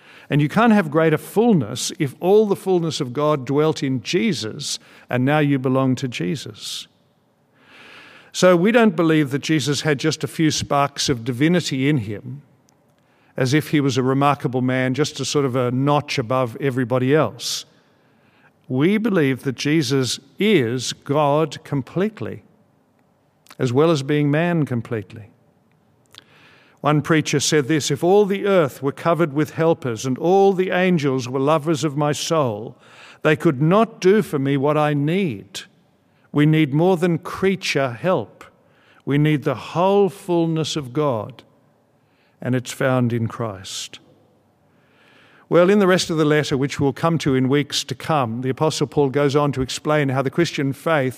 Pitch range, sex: 135-160 Hz, male